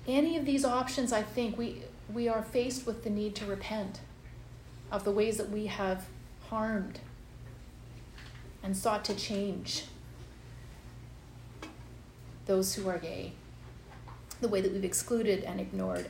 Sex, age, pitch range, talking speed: female, 30-49, 175-245 Hz, 140 wpm